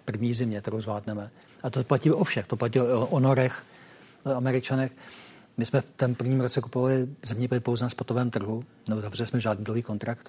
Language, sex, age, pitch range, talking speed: Czech, male, 50-69, 110-130 Hz, 180 wpm